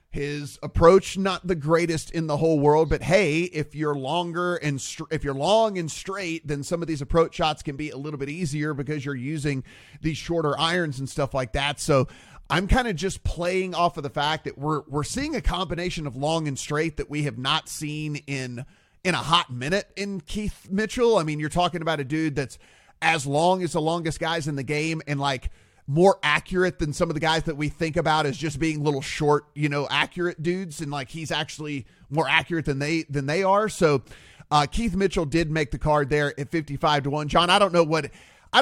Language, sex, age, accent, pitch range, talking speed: English, male, 30-49, American, 145-170 Hz, 225 wpm